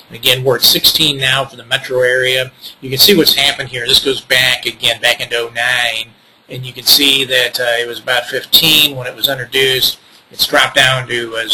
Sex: male